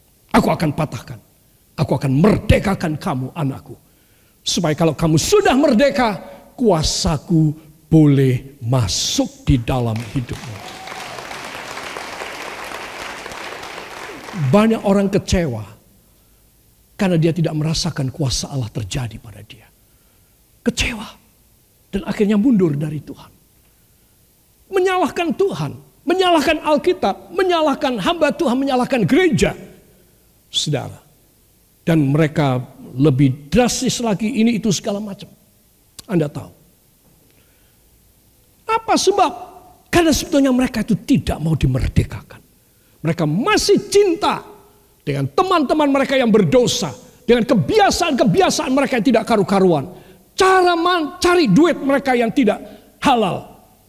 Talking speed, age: 100 wpm, 50-69